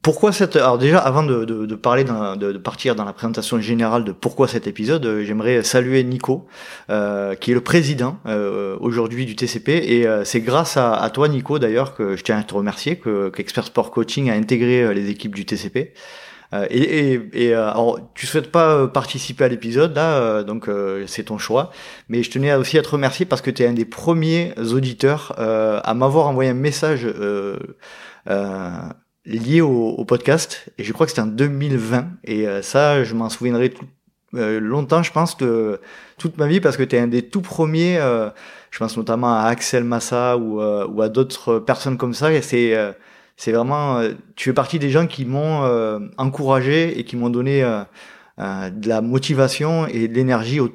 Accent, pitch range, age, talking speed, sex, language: French, 110-140 Hz, 30-49, 210 wpm, male, French